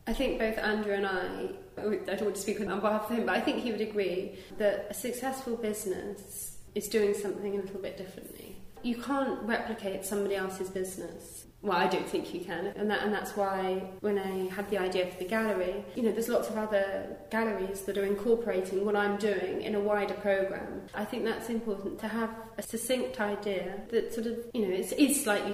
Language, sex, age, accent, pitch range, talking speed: English, female, 20-39, British, 190-220 Hz, 215 wpm